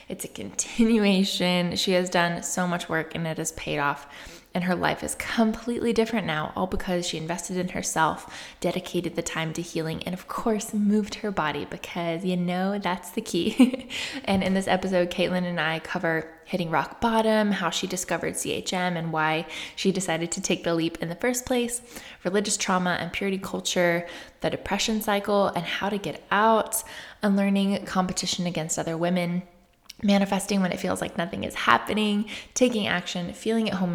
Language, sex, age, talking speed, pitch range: English, female, 20-39, 180 wpm, 170-205 Hz